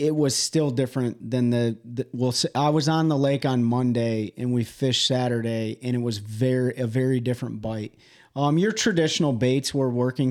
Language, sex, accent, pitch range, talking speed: English, male, American, 120-145 Hz, 190 wpm